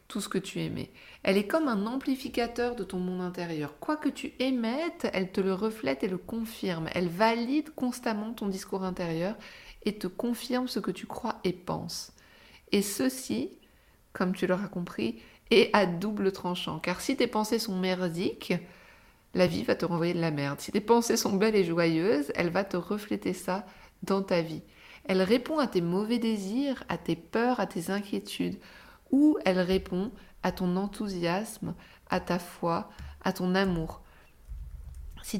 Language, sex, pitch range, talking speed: French, female, 180-225 Hz, 175 wpm